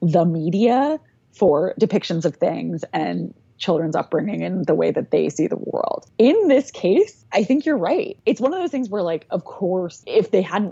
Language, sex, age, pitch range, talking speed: English, female, 20-39, 175-240 Hz, 200 wpm